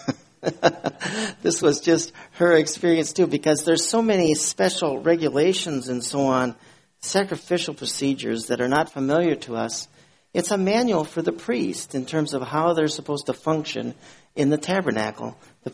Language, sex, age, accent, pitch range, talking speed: English, male, 50-69, American, 130-165 Hz, 155 wpm